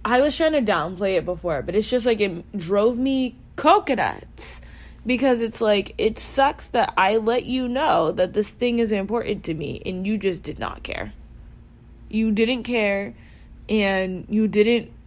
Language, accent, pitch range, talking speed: English, American, 185-235 Hz, 175 wpm